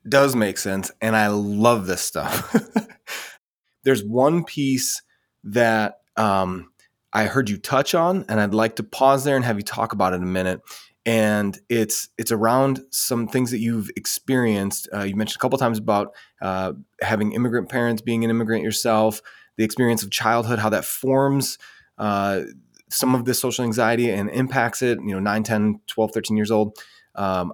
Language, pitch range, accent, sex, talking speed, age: English, 105-125 Hz, American, male, 180 wpm, 20-39